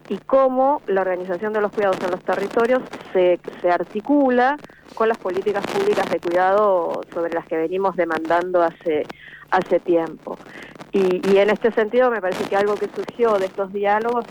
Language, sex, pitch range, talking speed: Spanish, female, 175-225 Hz, 170 wpm